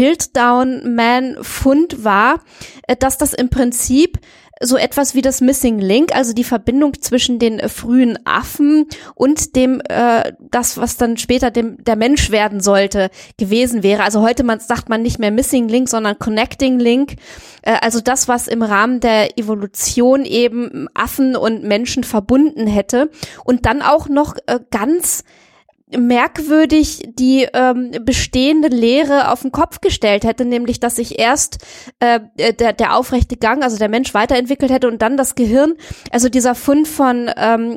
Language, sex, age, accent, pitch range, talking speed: German, female, 20-39, German, 230-275 Hz, 160 wpm